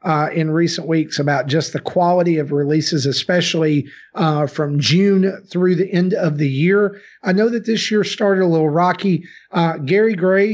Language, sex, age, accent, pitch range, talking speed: English, male, 40-59, American, 155-200 Hz, 180 wpm